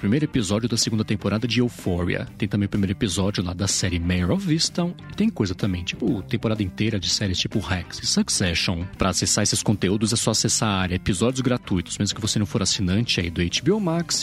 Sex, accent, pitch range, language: male, Brazilian, 95-125 Hz, Portuguese